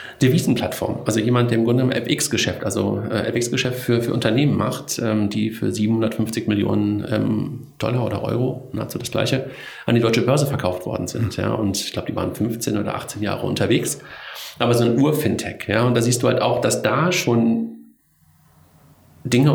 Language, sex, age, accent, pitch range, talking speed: German, male, 40-59, German, 110-130 Hz, 185 wpm